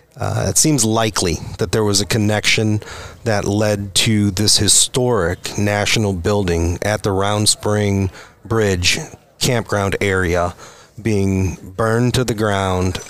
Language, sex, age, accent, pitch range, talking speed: English, male, 40-59, American, 100-115 Hz, 130 wpm